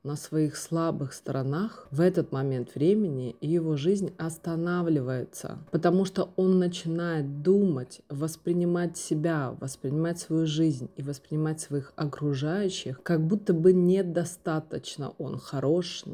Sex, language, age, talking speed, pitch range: female, Russian, 30-49, 120 wpm, 145-180 Hz